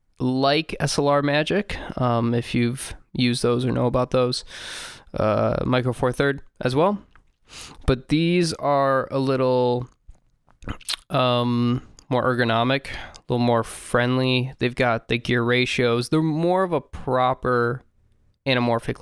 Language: English